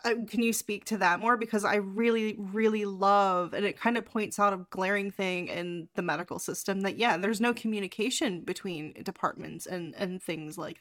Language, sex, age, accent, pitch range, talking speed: English, female, 20-39, American, 185-230 Hz, 195 wpm